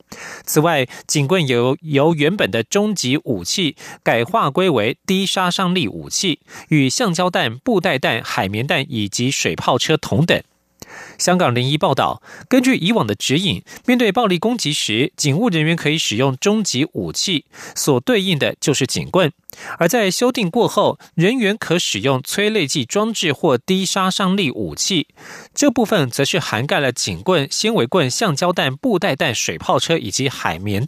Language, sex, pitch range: German, male, 140-190 Hz